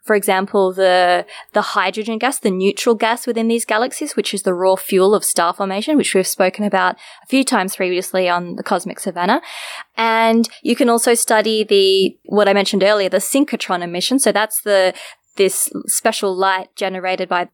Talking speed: 180 wpm